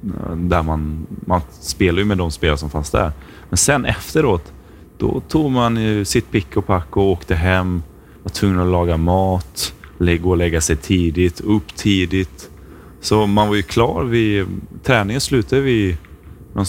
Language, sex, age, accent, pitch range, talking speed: Swedish, male, 20-39, native, 85-110 Hz, 170 wpm